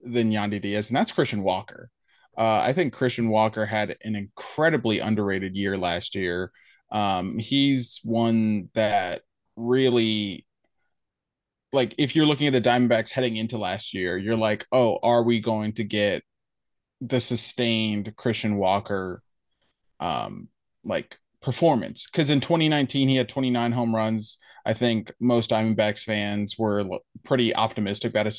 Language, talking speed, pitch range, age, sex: English, 145 wpm, 105-120 Hz, 20-39, male